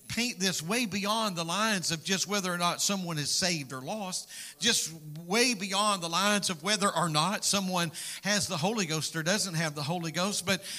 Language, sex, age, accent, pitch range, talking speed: English, male, 50-69, American, 175-210 Hz, 205 wpm